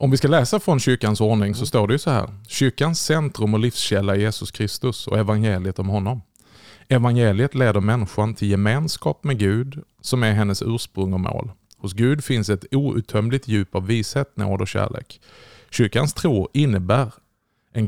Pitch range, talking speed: 105-130 Hz, 175 wpm